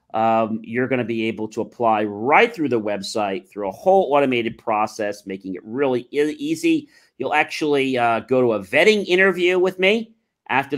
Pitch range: 120-195 Hz